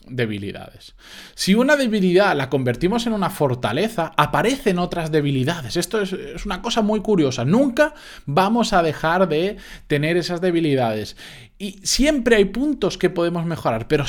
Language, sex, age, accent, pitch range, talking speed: Spanish, male, 20-39, Spanish, 140-195 Hz, 145 wpm